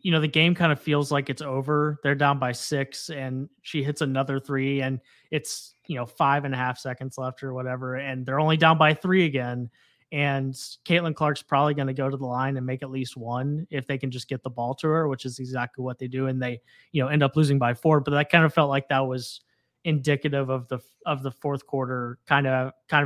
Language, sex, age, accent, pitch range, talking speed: English, male, 20-39, American, 130-150 Hz, 245 wpm